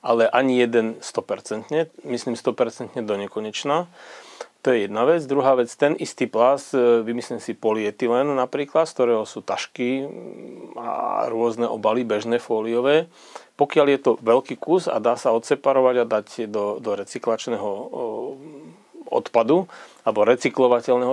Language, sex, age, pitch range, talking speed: Slovak, male, 40-59, 115-130 Hz, 135 wpm